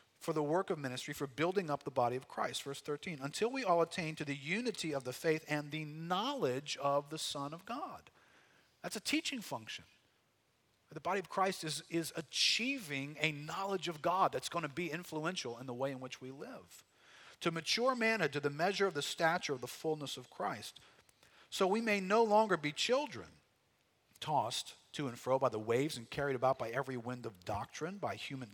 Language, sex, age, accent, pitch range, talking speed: English, male, 50-69, American, 130-180 Hz, 205 wpm